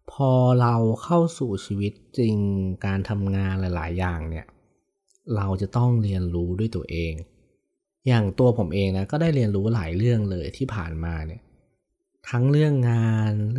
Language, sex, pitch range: Thai, male, 95-120 Hz